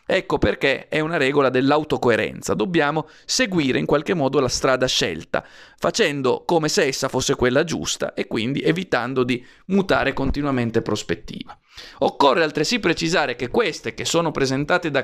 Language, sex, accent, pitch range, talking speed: Italian, male, native, 130-165 Hz, 150 wpm